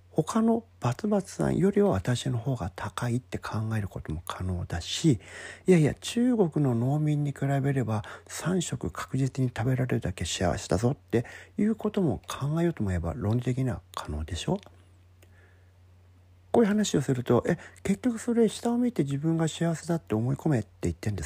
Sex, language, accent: male, Japanese, native